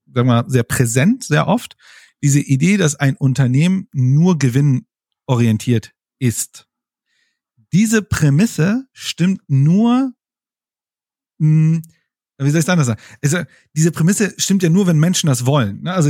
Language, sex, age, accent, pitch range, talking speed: German, male, 40-59, German, 130-175 Hz, 120 wpm